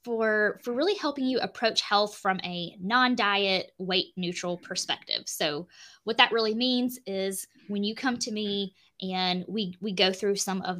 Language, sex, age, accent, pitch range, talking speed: English, female, 10-29, American, 185-220 Hz, 170 wpm